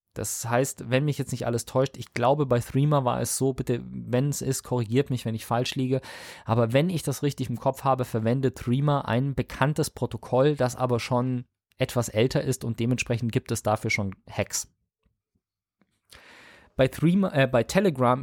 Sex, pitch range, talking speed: male, 115-140 Hz, 185 wpm